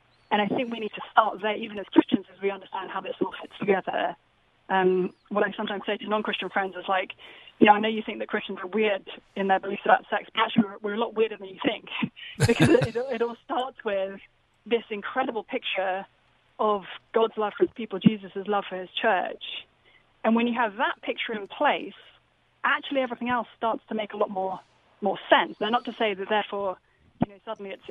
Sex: female